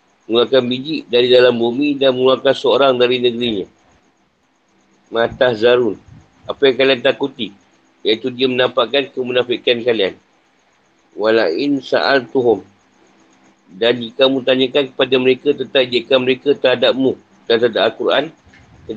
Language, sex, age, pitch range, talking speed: Malay, male, 50-69, 110-130 Hz, 120 wpm